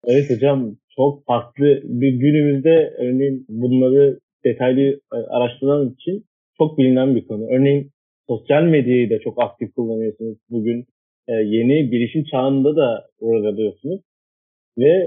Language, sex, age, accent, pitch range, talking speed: Turkish, male, 40-59, native, 120-145 Hz, 125 wpm